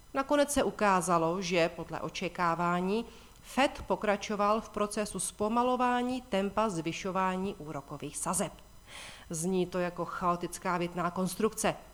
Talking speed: 105 wpm